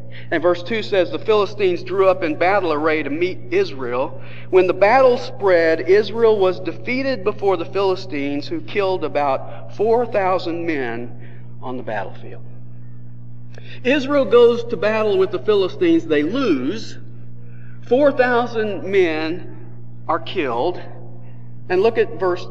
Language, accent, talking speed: English, American, 130 wpm